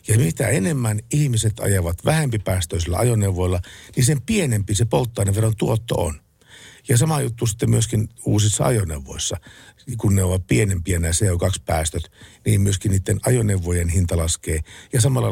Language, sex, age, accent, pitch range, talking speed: Finnish, male, 50-69, native, 95-125 Hz, 140 wpm